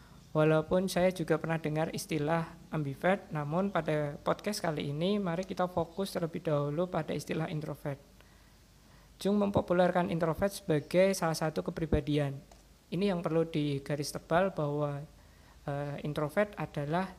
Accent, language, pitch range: native, Indonesian, 150-175 Hz